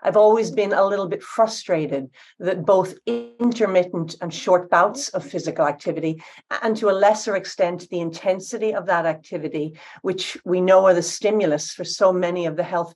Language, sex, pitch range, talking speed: English, female, 165-185 Hz, 175 wpm